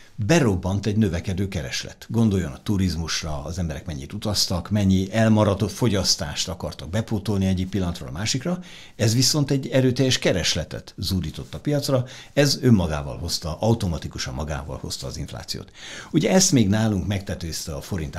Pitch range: 85-110 Hz